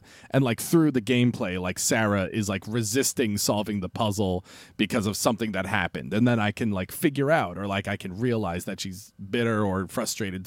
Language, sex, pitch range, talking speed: English, male, 100-145 Hz, 200 wpm